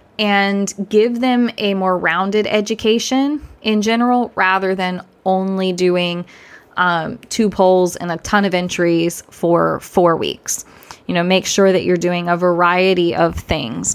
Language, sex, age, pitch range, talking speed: English, female, 20-39, 175-200 Hz, 150 wpm